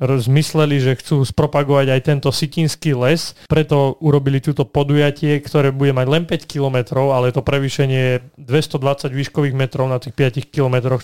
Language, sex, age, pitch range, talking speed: Slovak, male, 30-49, 130-150 Hz, 160 wpm